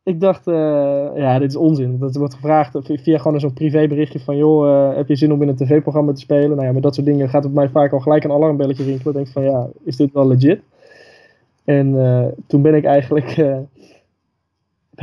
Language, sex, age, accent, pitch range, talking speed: Dutch, male, 20-39, Dutch, 140-165 Hz, 225 wpm